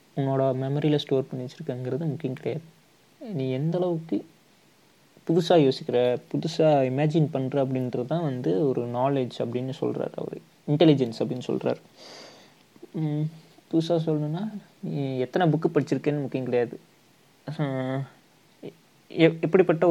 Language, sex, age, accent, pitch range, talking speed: Tamil, male, 20-39, native, 130-160 Hz, 105 wpm